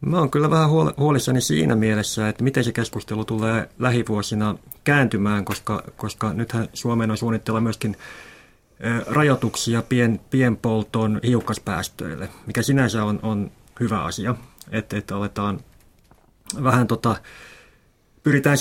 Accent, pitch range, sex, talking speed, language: native, 105-125 Hz, male, 115 wpm, Finnish